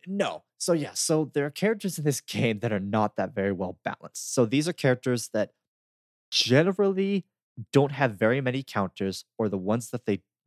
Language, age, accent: English, 20-39, American